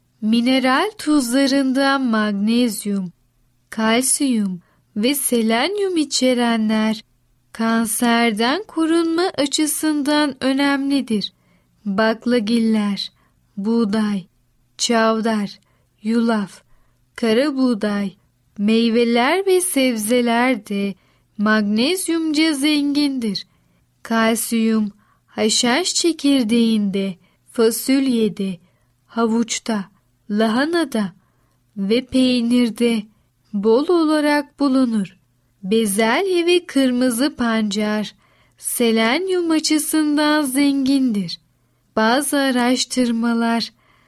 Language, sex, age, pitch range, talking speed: Turkish, female, 10-29, 215-280 Hz, 60 wpm